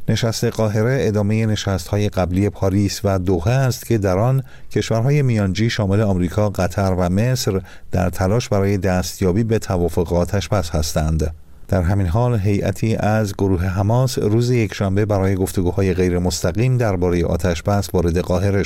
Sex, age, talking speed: male, 50-69, 140 wpm